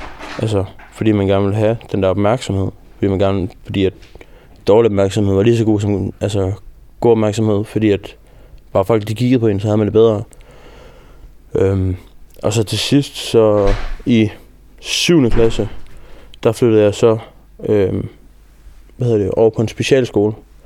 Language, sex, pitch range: Danish, male, 100-115 Hz